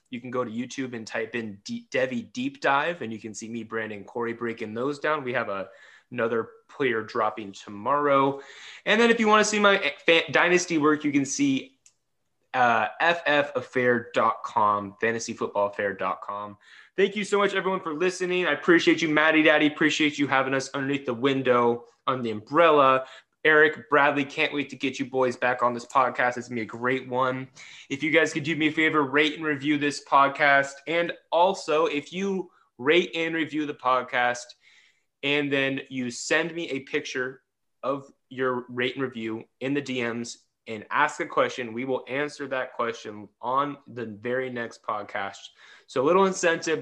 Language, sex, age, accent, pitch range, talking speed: English, male, 20-39, American, 125-155 Hz, 180 wpm